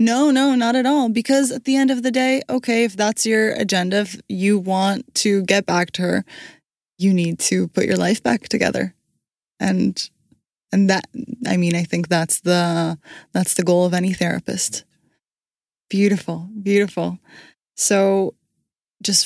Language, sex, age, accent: English, female, 20-39, American